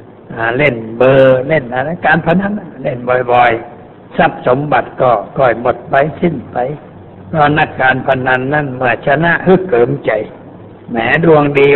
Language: Thai